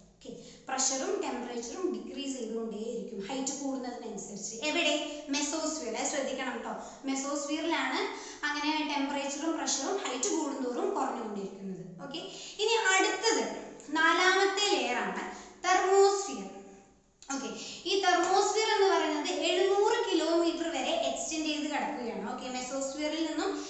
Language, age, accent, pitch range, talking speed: Malayalam, 20-39, native, 270-345 Hz, 95 wpm